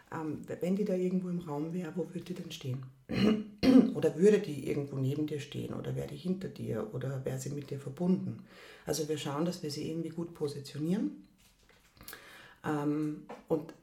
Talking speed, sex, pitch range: 175 wpm, female, 150-170 Hz